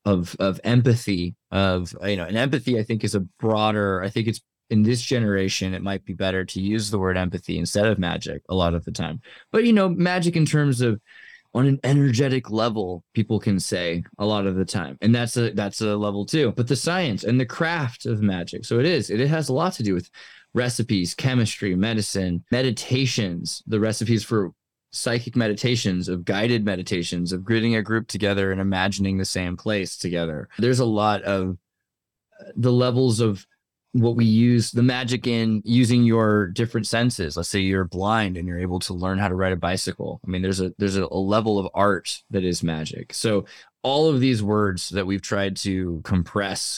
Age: 20-39